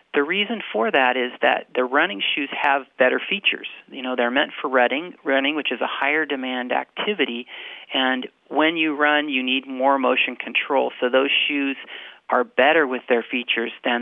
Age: 40-59